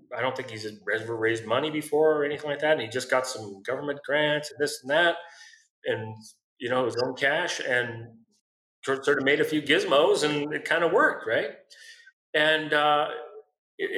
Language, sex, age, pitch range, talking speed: English, male, 40-59, 125-170 Hz, 190 wpm